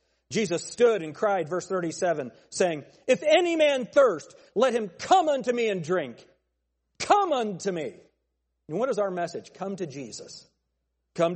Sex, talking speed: male, 160 wpm